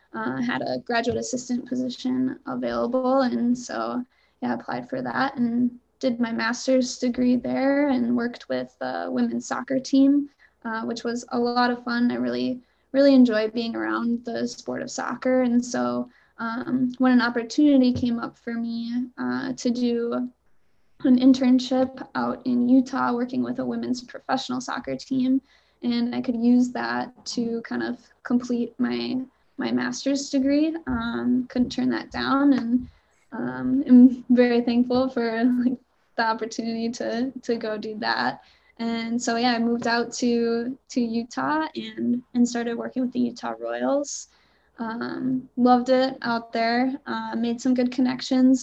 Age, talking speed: 10-29, 155 wpm